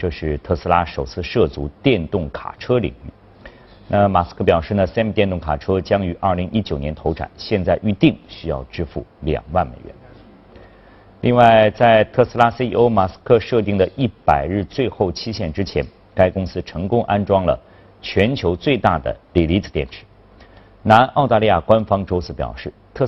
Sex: male